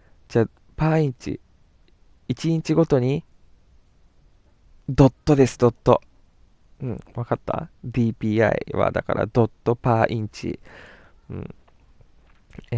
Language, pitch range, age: Japanese, 100-145 Hz, 20-39